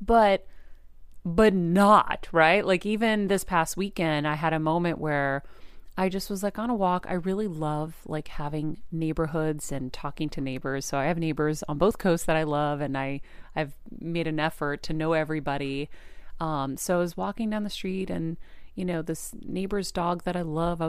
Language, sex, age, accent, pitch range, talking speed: English, female, 30-49, American, 150-190 Hz, 195 wpm